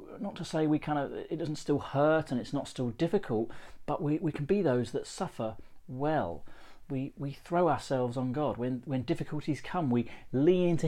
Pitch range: 125-155 Hz